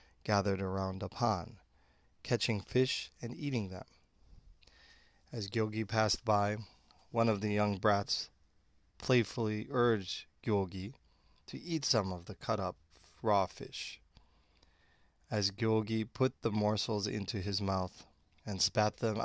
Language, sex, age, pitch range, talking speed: English, male, 30-49, 90-110 Hz, 125 wpm